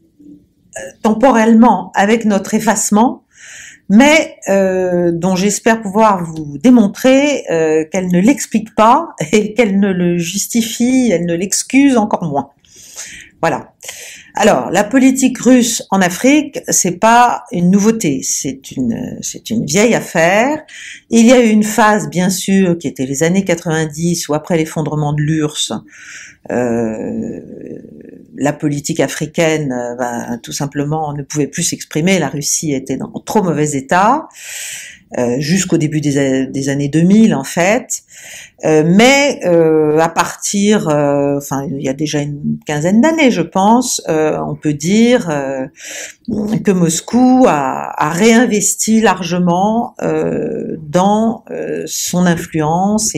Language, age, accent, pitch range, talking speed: French, 50-69, French, 155-225 Hz, 135 wpm